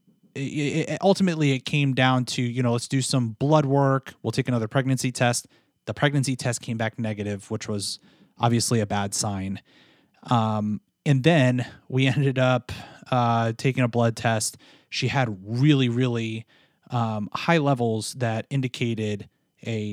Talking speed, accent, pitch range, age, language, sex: 150 wpm, American, 115-145 Hz, 30-49, English, male